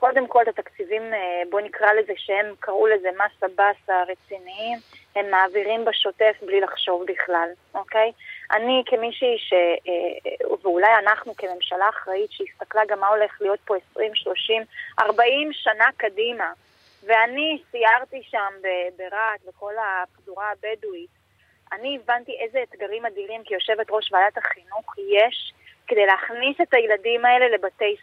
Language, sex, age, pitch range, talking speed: Hebrew, female, 20-39, 205-260 Hz, 135 wpm